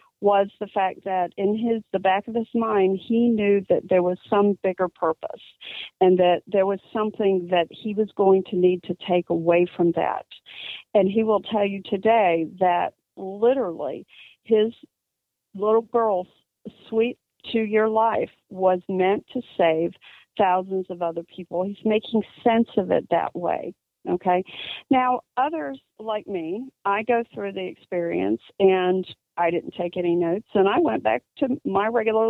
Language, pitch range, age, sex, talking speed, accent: English, 180-225 Hz, 50-69, female, 165 wpm, American